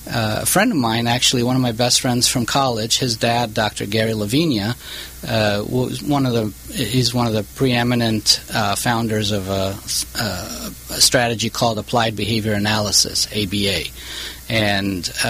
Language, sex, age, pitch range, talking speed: English, male, 40-59, 105-125 Hz, 160 wpm